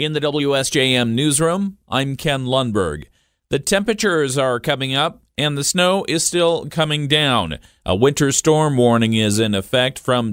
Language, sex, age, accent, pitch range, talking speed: English, male, 40-59, American, 115-155 Hz, 155 wpm